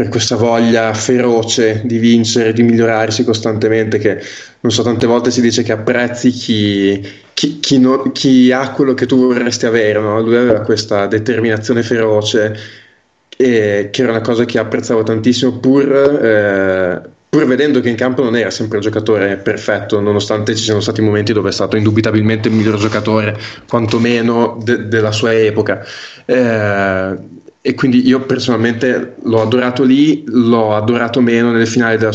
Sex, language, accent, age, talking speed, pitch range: male, Italian, native, 20-39, 160 wpm, 110-120 Hz